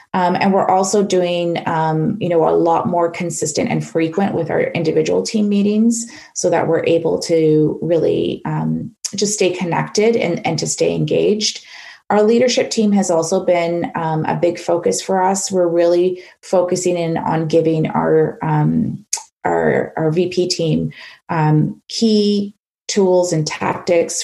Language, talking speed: English, 150 wpm